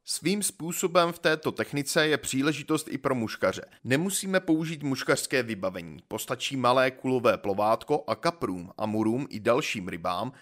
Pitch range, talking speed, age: 120-155 Hz, 140 wpm, 30-49